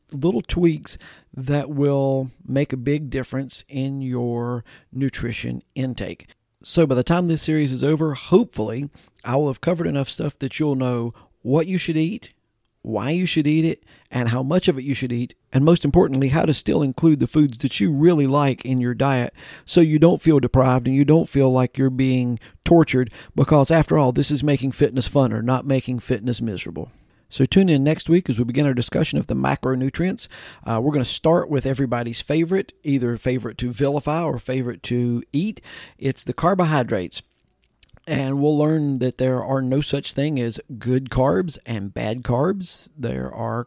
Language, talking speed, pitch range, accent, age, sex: English, 190 wpm, 125-150 Hz, American, 40-59, male